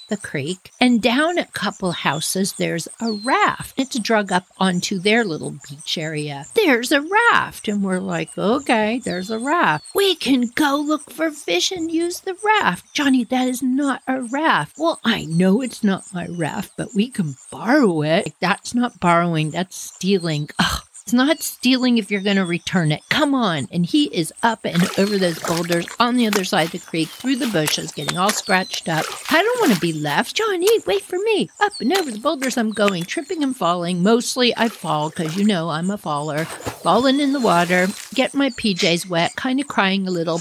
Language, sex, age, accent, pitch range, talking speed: English, female, 50-69, American, 170-255 Hz, 205 wpm